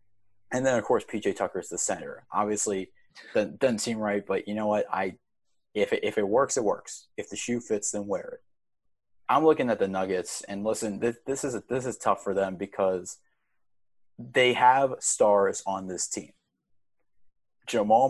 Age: 20-39